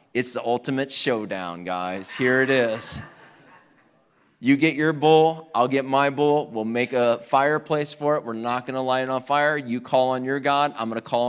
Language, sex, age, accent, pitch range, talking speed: English, male, 30-49, American, 145-230 Hz, 205 wpm